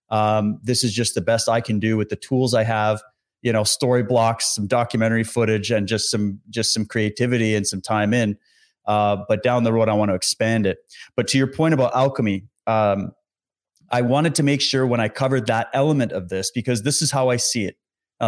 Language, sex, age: English, male, 30-49